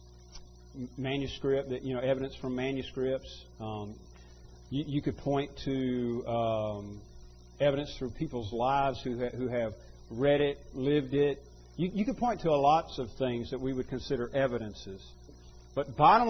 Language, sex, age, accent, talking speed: English, male, 50-69, American, 155 wpm